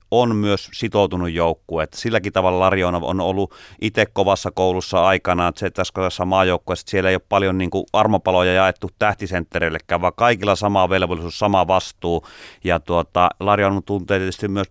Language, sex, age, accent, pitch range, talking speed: Finnish, male, 30-49, native, 85-105 Hz, 155 wpm